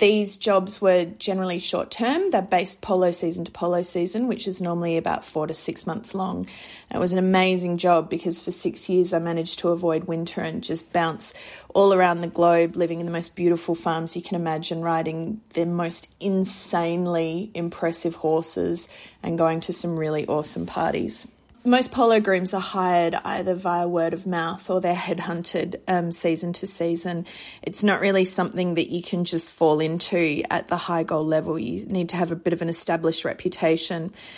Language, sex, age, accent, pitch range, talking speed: English, female, 30-49, Australian, 170-185 Hz, 185 wpm